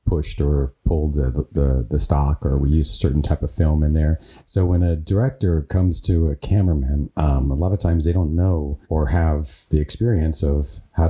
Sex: male